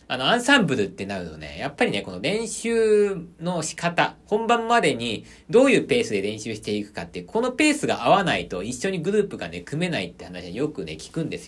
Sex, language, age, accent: male, Japanese, 40-59, native